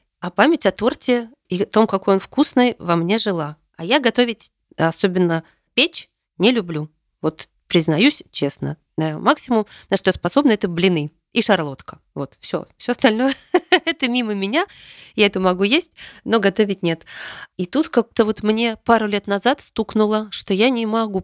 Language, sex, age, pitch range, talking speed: Russian, female, 20-39, 170-225 Hz, 170 wpm